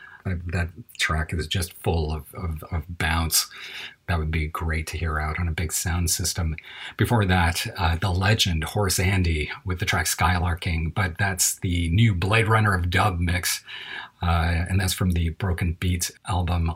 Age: 40-59